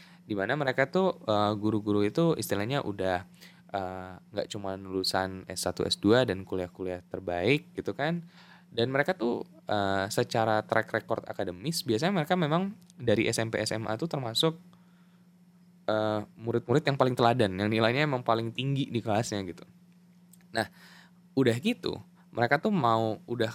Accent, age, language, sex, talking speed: native, 10-29, Indonesian, male, 125 wpm